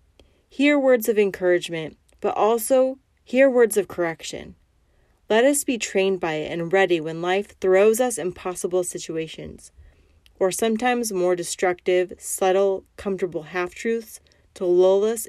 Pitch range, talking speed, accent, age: 150-195 Hz, 135 wpm, American, 30-49